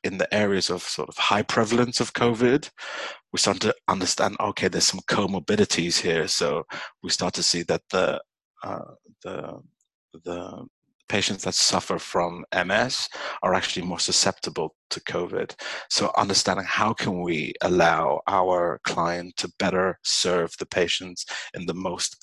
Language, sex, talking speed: English, male, 150 wpm